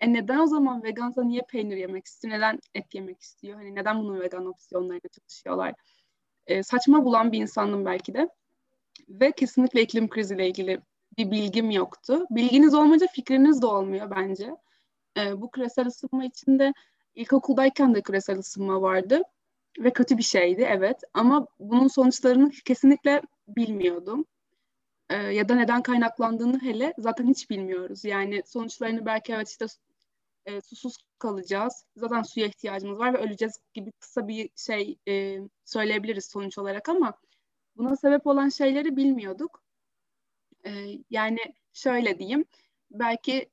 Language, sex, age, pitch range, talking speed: Turkish, female, 20-39, 200-265 Hz, 140 wpm